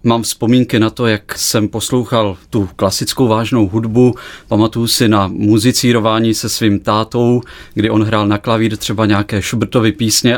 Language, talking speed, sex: Czech, 155 wpm, male